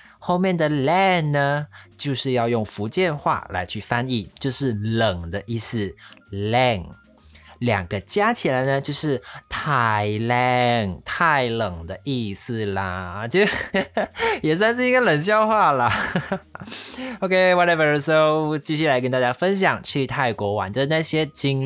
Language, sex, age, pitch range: Chinese, male, 20-39, 105-155 Hz